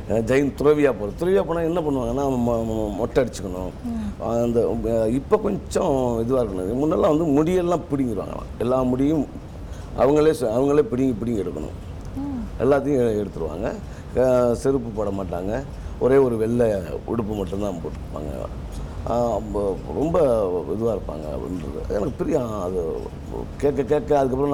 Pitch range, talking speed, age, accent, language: 105-155 Hz, 110 wpm, 50-69, native, Tamil